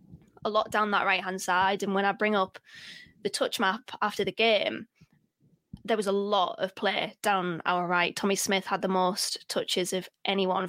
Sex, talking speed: female, 190 wpm